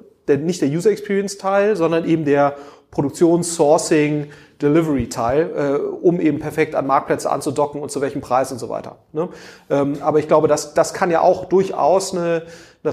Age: 30-49